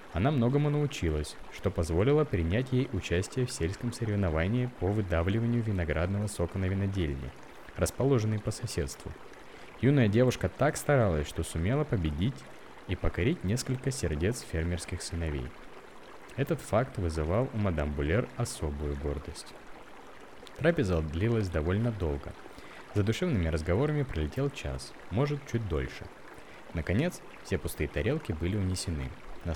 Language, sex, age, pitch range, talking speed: Russian, male, 20-39, 80-115 Hz, 120 wpm